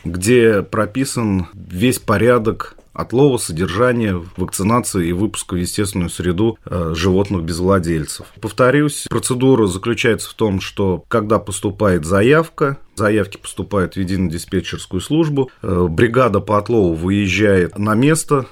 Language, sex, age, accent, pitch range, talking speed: Russian, male, 30-49, native, 95-120 Hz, 120 wpm